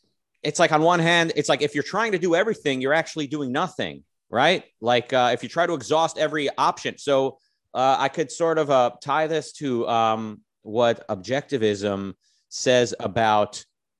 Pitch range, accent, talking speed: 125-155 Hz, American, 180 wpm